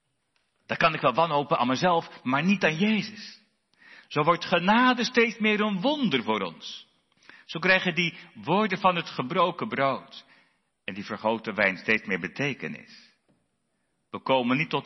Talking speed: 160 wpm